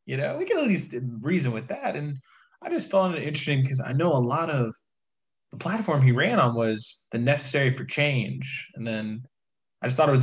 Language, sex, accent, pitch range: English, male, American, 115-145 Hz